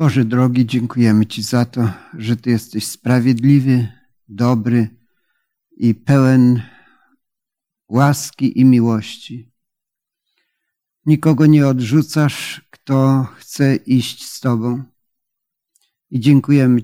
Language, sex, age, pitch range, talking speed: Polish, male, 50-69, 125-150 Hz, 95 wpm